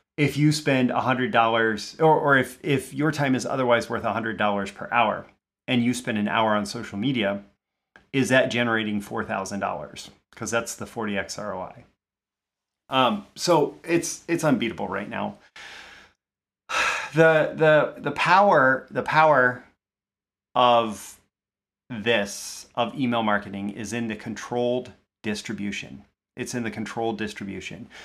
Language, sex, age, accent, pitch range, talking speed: English, male, 30-49, American, 100-130 Hz, 140 wpm